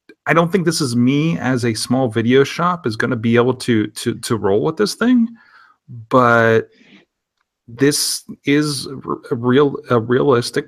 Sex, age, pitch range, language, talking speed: male, 30-49, 110-130 Hz, English, 170 wpm